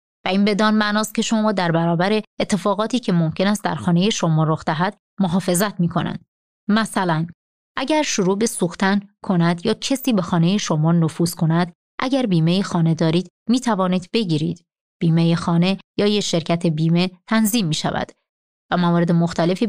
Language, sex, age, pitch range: Persian, female, 30-49, 170-215 Hz